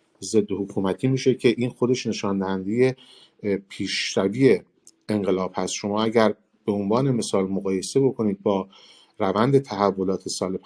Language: Persian